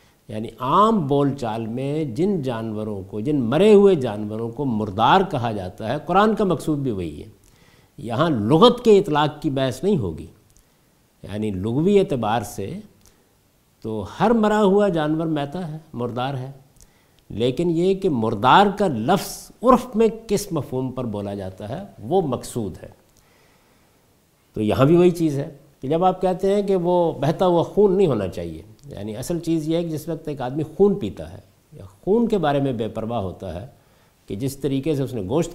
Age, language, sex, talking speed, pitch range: 50-69, Urdu, male, 180 wpm, 110-180 Hz